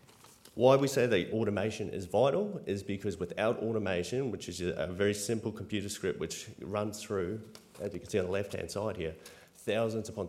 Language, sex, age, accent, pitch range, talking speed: English, male, 30-49, Australian, 90-115 Hz, 185 wpm